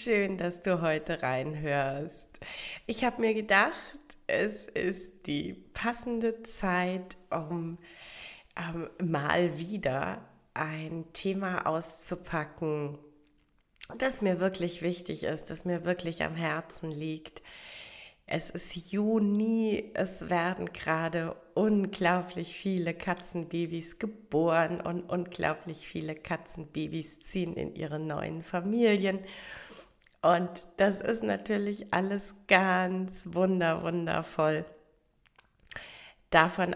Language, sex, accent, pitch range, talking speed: German, female, German, 155-195 Hz, 95 wpm